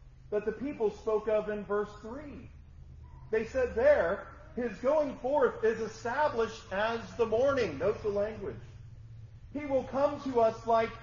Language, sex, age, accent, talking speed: English, male, 40-59, American, 150 wpm